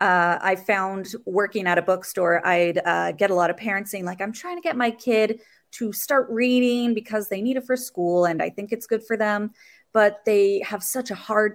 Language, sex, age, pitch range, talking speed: English, female, 20-39, 180-225 Hz, 230 wpm